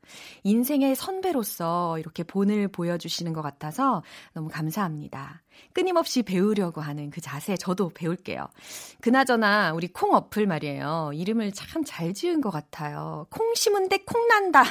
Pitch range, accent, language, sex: 165-265 Hz, native, Korean, female